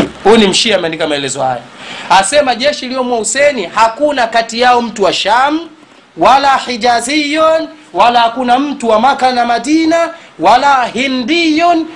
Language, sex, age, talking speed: Swahili, male, 30-49, 130 wpm